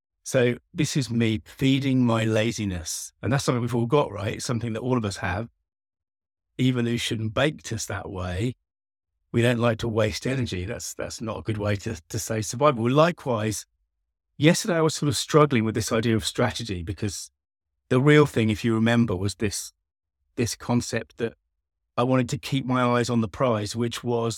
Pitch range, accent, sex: 95-130 Hz, British, male